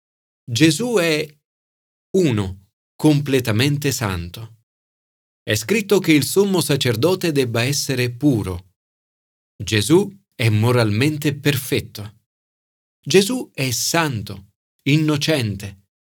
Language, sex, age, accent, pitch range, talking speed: Italian, male, 40-59, native, 105-155 Hz, 80 wpm